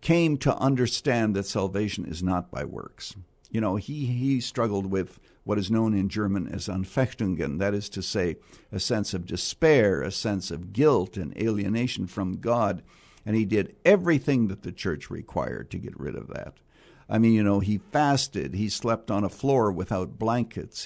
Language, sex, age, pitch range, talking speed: English, male, 60-79, 100-150 Hz, 185 wpm